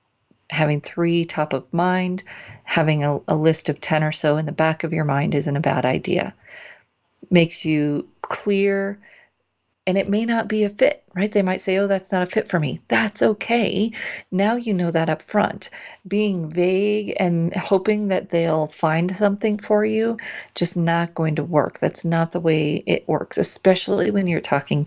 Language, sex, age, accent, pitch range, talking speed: English, female, 40-59, American, 150-190 Hz, 185 wpm